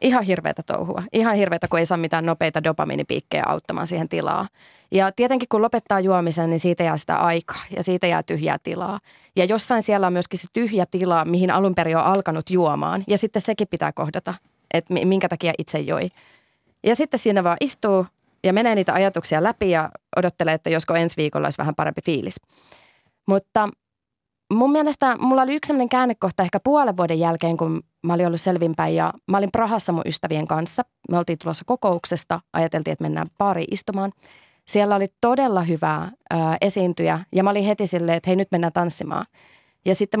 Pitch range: 170-205 Hz